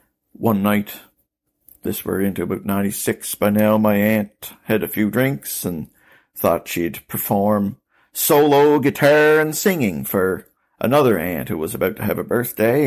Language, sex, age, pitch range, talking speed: English, male, 60-79, 105-140 Hz, 155 wpm